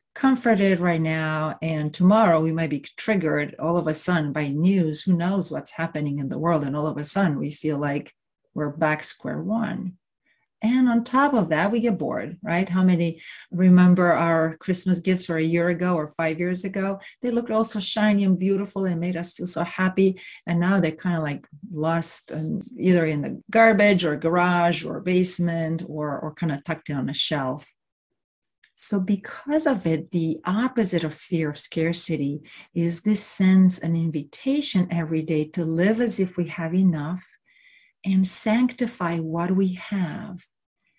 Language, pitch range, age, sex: English, 155-190 Hz, 40-59, female